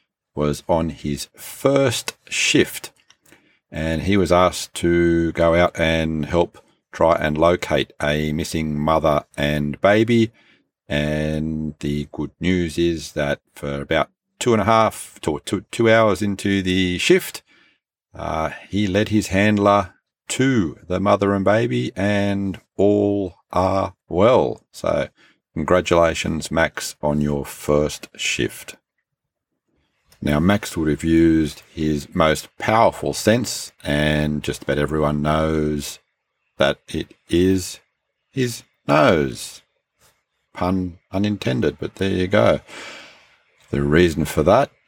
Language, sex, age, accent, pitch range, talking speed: English, male, 50-69, Australian, 75-95 Hz, 120 wpm